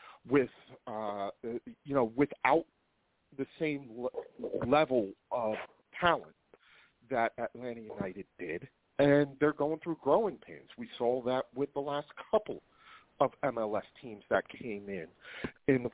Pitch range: 110-145 Hz